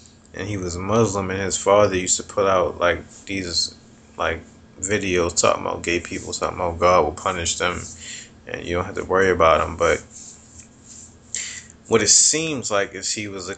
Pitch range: 95-115 Hz